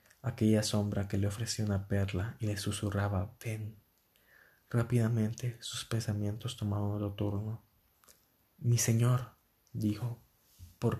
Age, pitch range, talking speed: 20-39, 100-115 Hz, 115 wpm